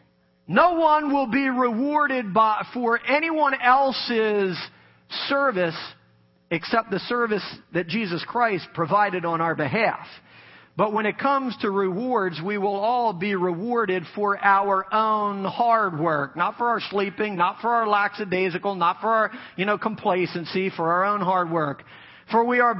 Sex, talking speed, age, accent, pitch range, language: male, 155 wpm, 40-59, American, 200-270 Hz, English